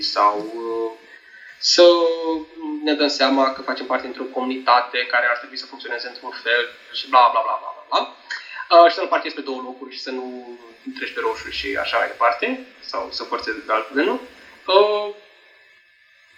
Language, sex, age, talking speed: Romanian, male, 20-39, 185 wpm